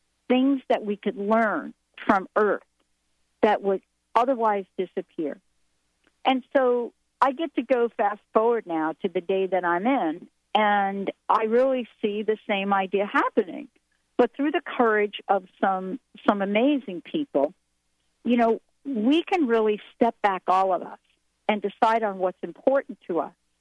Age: 50-69